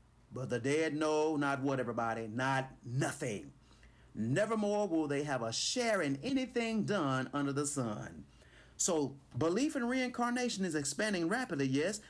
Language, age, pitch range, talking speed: English, 40-59, 125-205 Hz, 145 wpm